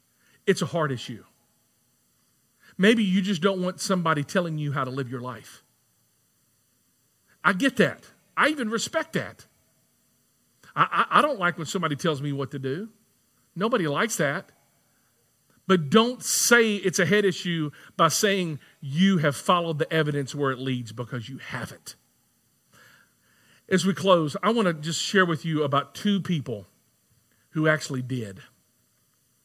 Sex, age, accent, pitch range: male, 50-69, American, 145-200 Hz